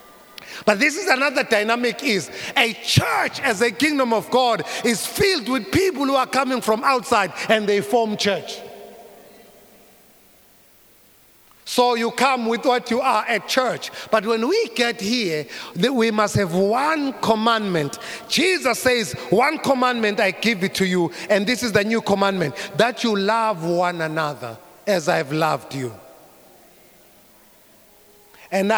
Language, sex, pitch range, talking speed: English, male, 185-235 Hz, 150 wpm